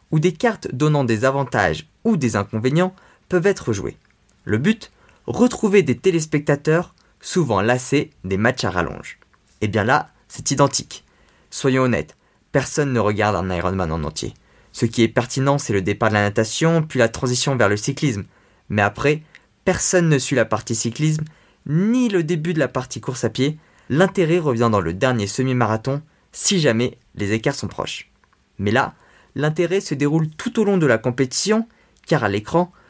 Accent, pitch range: French, 115-170 Hz